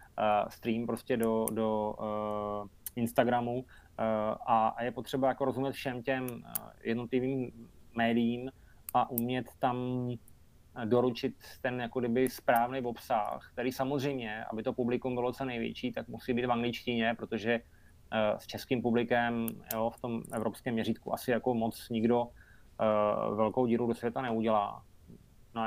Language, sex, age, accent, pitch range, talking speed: Czech, male, 20-39, native, 110-125 Hz, 135 wpm